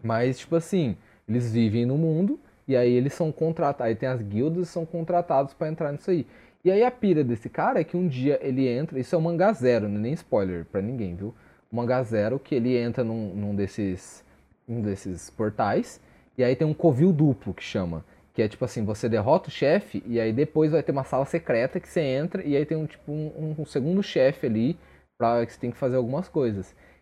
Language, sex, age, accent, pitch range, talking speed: Portuguese, male, 20-39, Brazilian, 105-160 Hz, 230 wpm